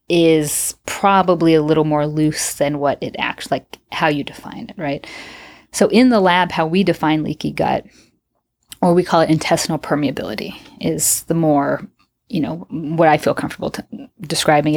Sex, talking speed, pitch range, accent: female, 165 wpm, 155-180 Hz, American